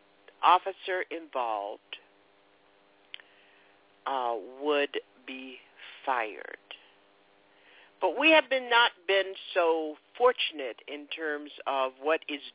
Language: English